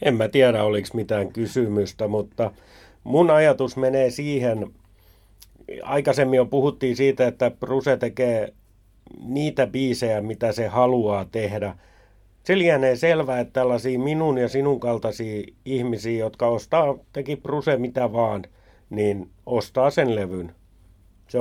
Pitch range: 100-140 Hz